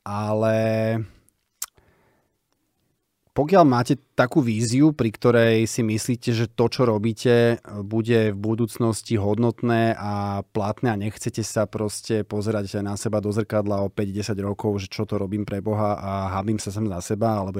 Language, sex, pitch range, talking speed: Slovak, male, 100-115 Hz, 150 wpm